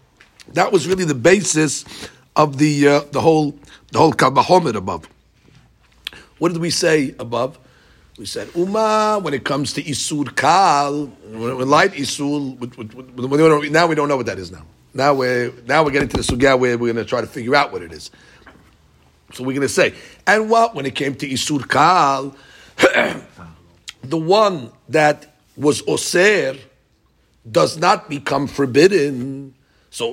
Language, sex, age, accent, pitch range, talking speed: English, male, 50-69, American, 125-160 Hz, 165 wpm